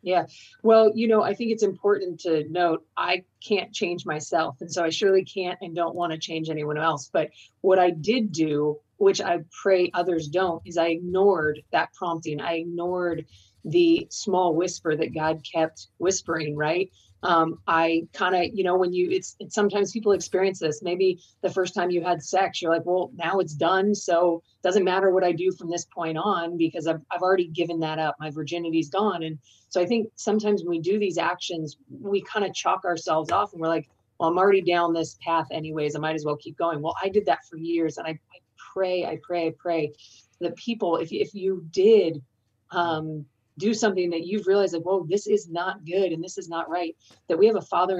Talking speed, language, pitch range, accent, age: 220 wpm, English, 160-190 Hz, American, 30-49